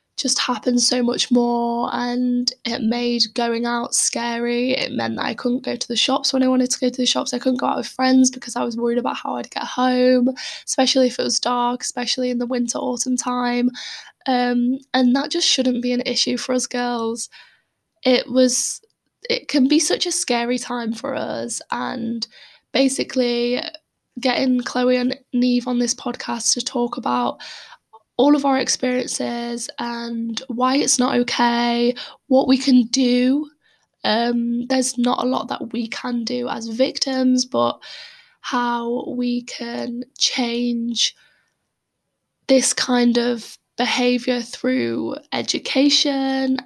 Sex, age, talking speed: female, 10-29, 160 wpm